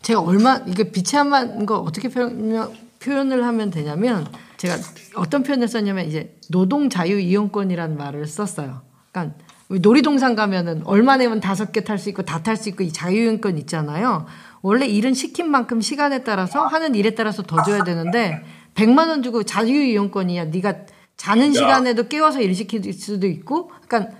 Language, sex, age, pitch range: Korean, female, 40-59, 185-260 Hz